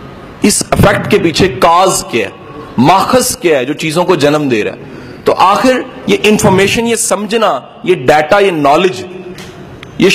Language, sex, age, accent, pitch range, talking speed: English, male, 40-59, Indian, 160-225 Hz, 160 wpm